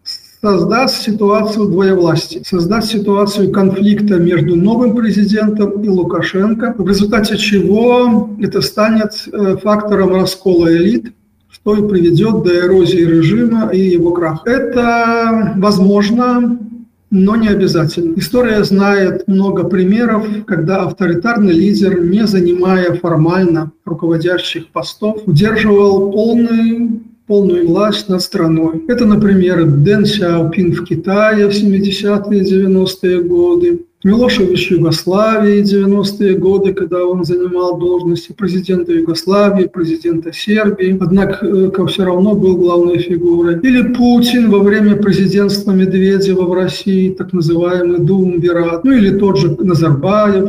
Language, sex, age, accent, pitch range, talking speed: Russian, male, 40-59, native, 175-210 Hz, 115 wpm